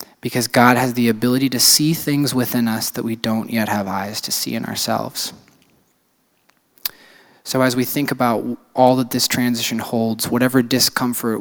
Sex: male